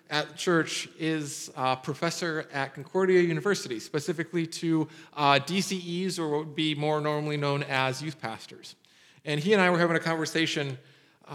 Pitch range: 150-190 Hz